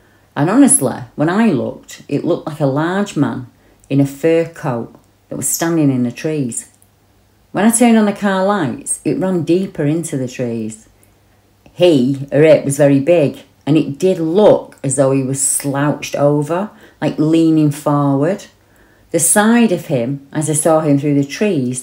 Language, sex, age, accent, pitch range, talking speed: English, female, 40-59, British, 125-155 Hz, 175 wpm